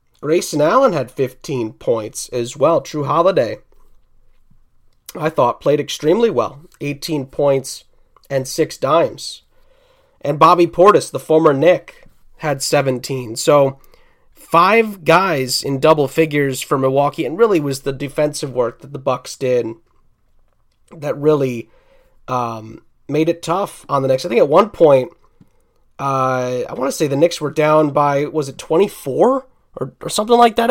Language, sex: English, male